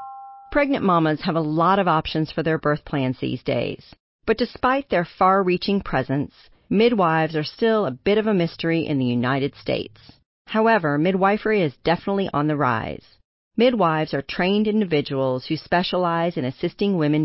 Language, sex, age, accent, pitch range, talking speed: English, female, 40-59, American, 145-195 Hz, 160 wpm